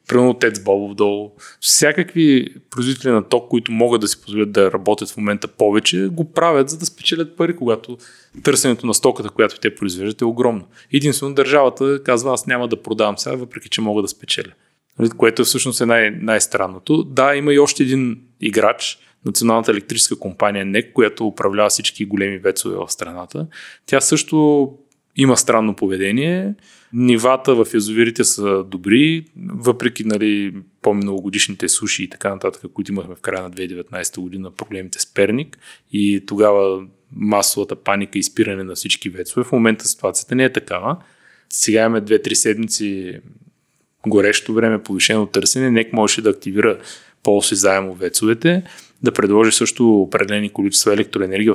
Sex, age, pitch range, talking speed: male, 20-39, 100-130 Hz, 150 wpm